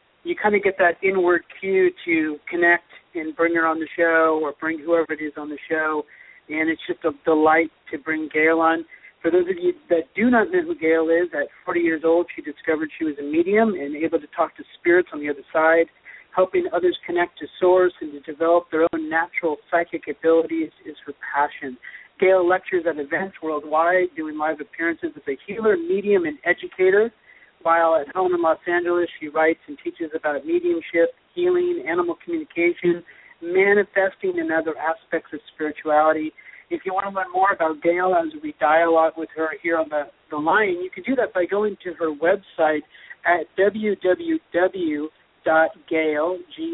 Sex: male